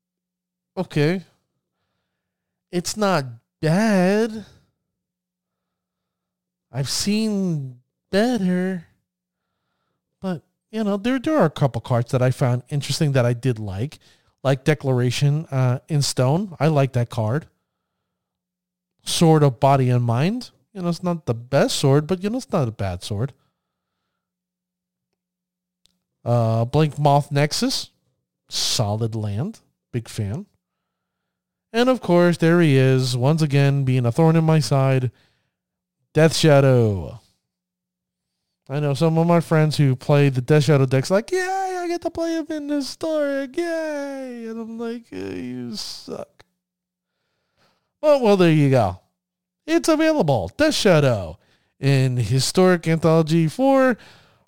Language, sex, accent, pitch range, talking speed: English, male, American, 130-185 Hz, 130 wpm